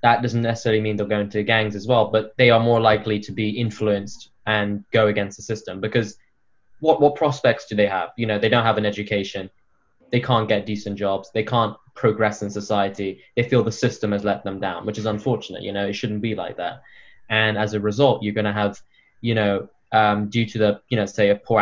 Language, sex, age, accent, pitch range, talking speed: English, male, 10-29, British, 105-120 Hz, 235 wpm